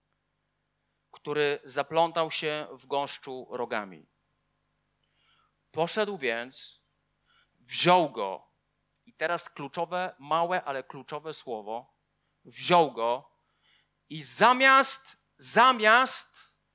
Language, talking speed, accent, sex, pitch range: Polish, 80 wpm, native, male, 145-210 Hz